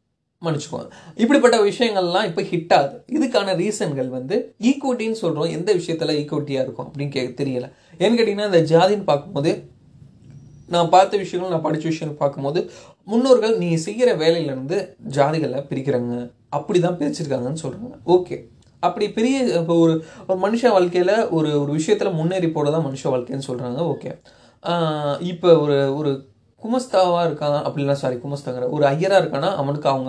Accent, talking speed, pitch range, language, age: native, 135 wpm, 140-185 Hz, Tamil, 20-39